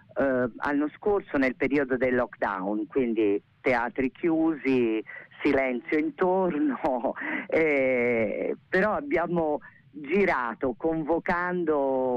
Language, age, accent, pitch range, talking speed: Italian, 40-59, native, 125-175 Hz, 85 wpm